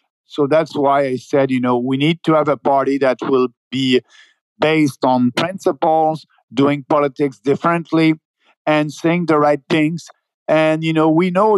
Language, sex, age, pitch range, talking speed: English, male, 50-69, 140-160 Hz, 165 wpm